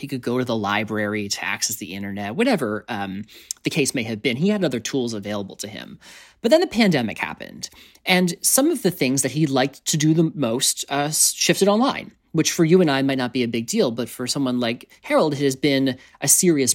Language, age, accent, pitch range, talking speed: English, 30-49, American, 115-175 Hz, 235 wpm